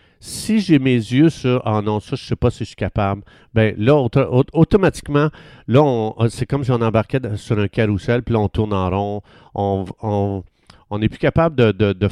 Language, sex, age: French, male, 50-69